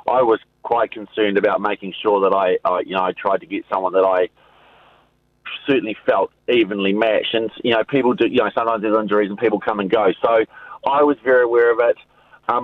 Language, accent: English, Australian